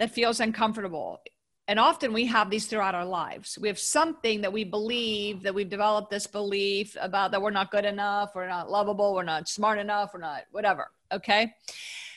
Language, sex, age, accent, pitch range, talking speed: English, female, 50-69, American, 205-285 Hz, 190 wpm